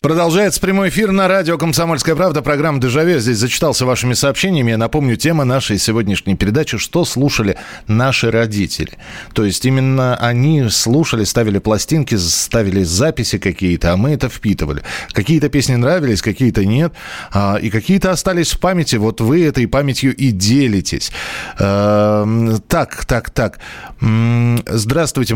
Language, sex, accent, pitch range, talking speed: Russian, male, native, 105-145 Hz, 135 wpm